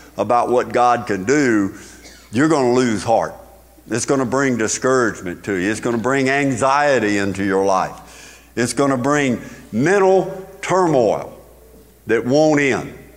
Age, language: 50-69, English